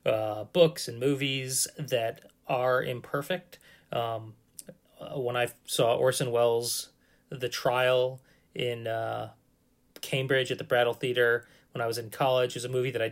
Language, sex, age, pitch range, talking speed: English, male, 30-49, 120-145 Hz, 150 wpm